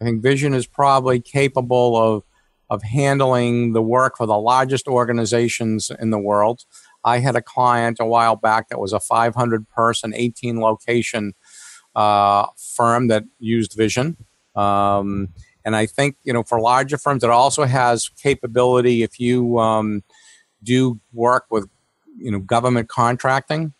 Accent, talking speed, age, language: American, 145 wpm, 50-69, English